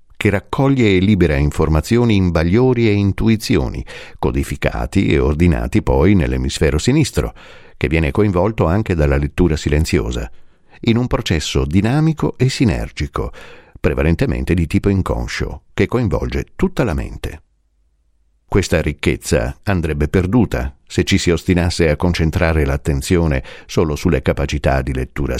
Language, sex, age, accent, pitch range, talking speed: Italian, male, 50-69, native, 70-95 Hz, 125 wpm